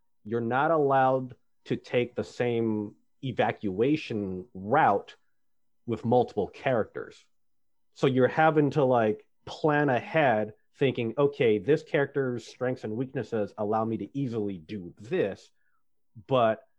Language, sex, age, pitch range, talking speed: English, male, 30-49, 110-145 Hz, 120 wpm